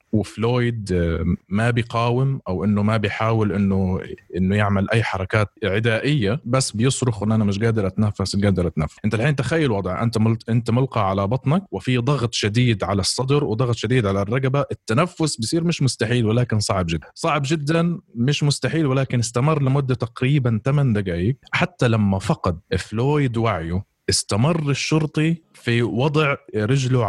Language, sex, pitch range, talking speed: Arabic, male, 105-130 Hz, 155 wpm